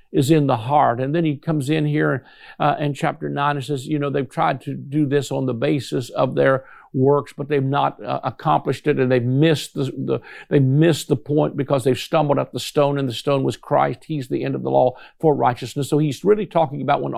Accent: American